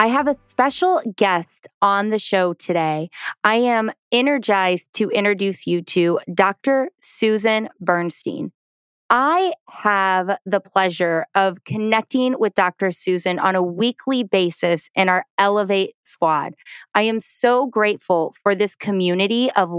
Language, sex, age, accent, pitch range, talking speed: English, female, 20-39, American, 185-245 Hz, 135 wpm